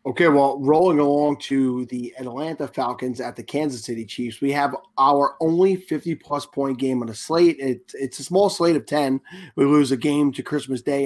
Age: 30-49